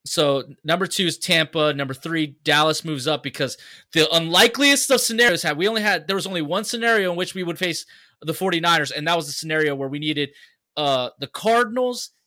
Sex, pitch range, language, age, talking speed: male, 140-175 Hz, English, 20-39, 205 wpm